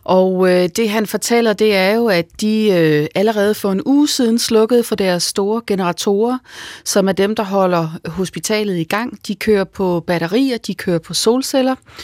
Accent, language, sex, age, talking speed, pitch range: native, Danish, female, 30-49, 180 wpm, 185-240 Hz